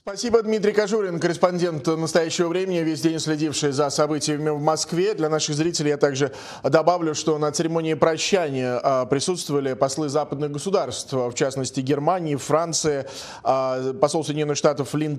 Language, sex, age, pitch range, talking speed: Russian, male, 20-39, 135-165 Hz, 140 wpm